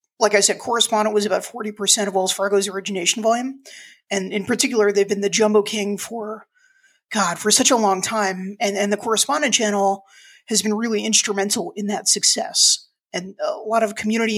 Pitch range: 200-230 Hz